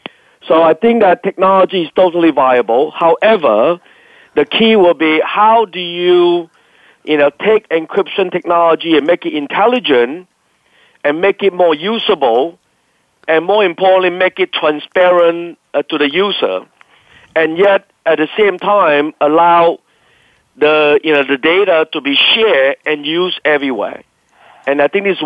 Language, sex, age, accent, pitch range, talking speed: English, male, 50-69, Malaysian, 150-185 Hz, 145 wpm